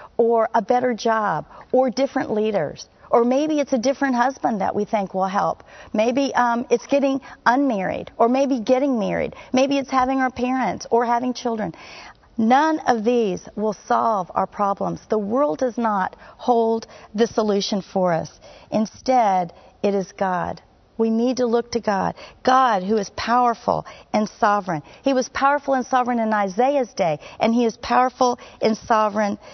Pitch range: 205-255 Hz